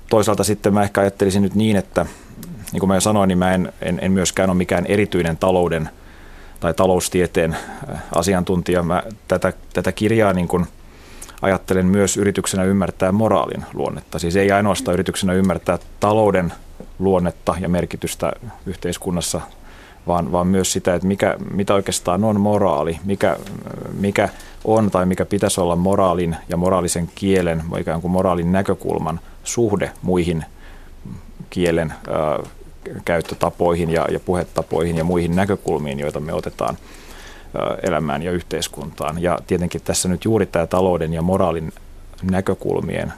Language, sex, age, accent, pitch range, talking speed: Finnish, male, 30-49, native, 85-95 Hz, 135 wpm